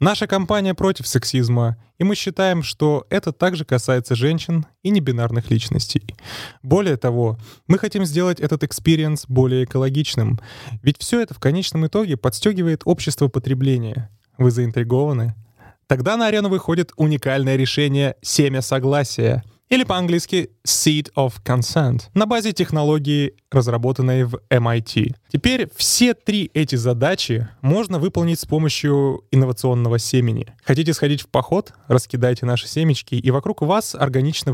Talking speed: 130 wpm